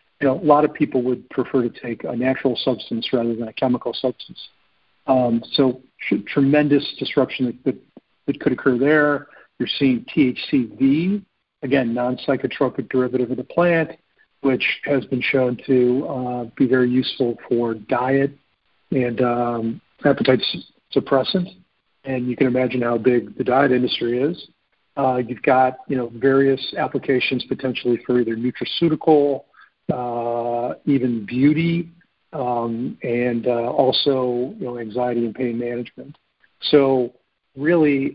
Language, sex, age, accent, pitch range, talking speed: English, male, 50-69, American, 120-140 Hz, 140 wpm